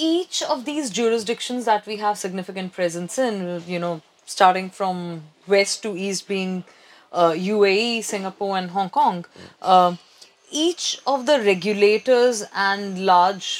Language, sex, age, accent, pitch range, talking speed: English, female, 30-49, Indian, 175-220 Hz, 135 wpm